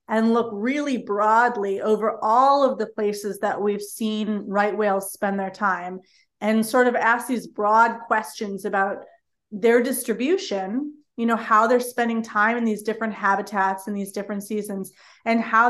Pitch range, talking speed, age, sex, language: 195-230 Hz, 165 wpm, 30-49, female, English